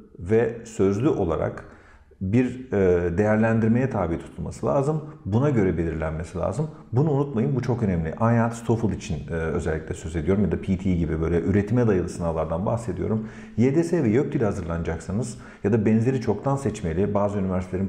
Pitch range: 90-120 Hz